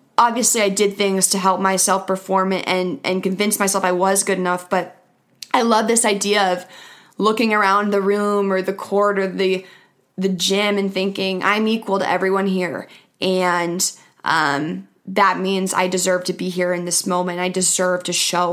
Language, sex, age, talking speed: English, female, 20-39, 185 wpm